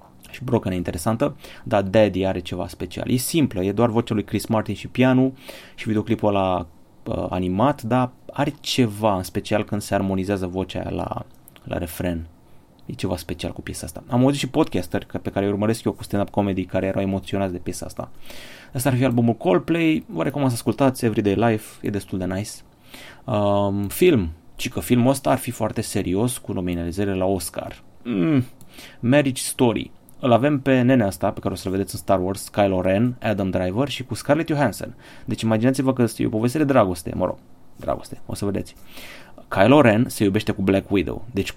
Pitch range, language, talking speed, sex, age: 95-125 Hz, Romanian, 190 wpm, male, 30-49